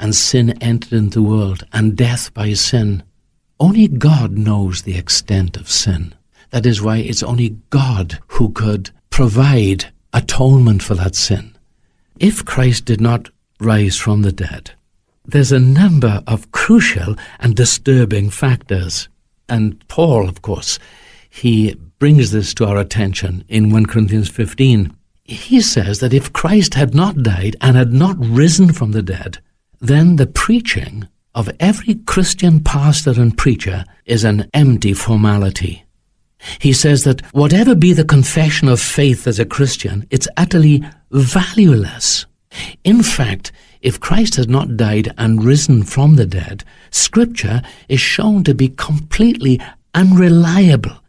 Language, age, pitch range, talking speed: English, 60-79, 105-145 Hz, 145 wpm